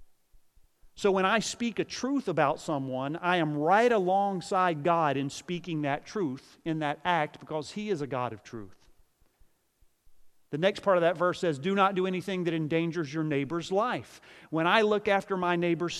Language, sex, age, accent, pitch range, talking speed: English, male, 40-59, American, 145-185 Hz, 185 wpm